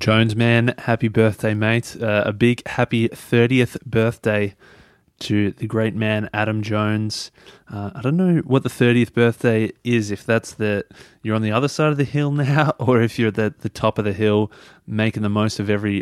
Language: English